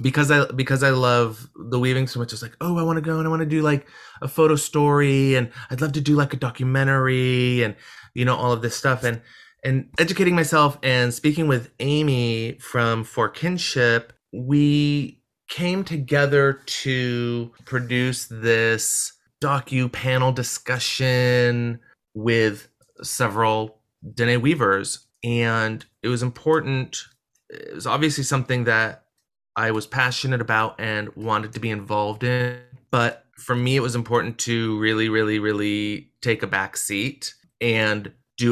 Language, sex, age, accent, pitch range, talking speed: English, male, 30-49, American, 115-135 Hz, 155 wpm